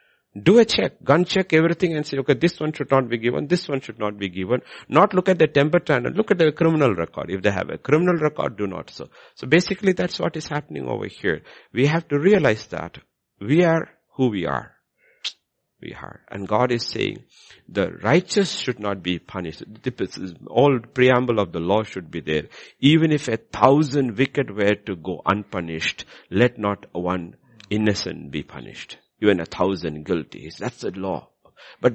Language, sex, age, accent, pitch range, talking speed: English, male, 60-79, Indian, 90-145 Hz, 195 wpm